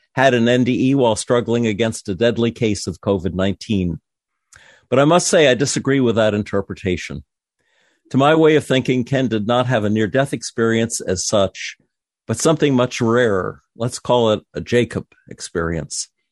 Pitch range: 100-125 Hz